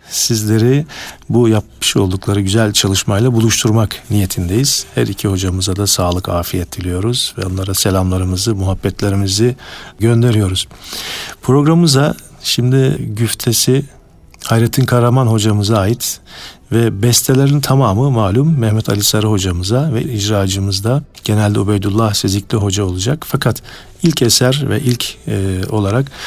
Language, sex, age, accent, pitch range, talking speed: Turkish, male, 50-69, native, 100-125 Hz, 115 wpm